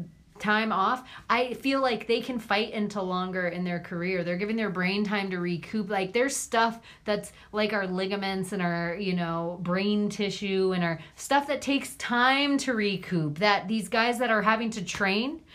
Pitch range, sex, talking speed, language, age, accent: 185-235 Hz, female, 190 wpm, English, 30-49, American